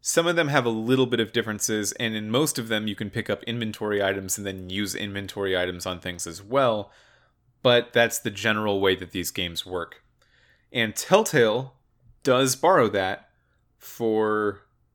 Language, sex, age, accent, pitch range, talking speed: English, male, 30-49, American, 100-125 Hz, 175 wpm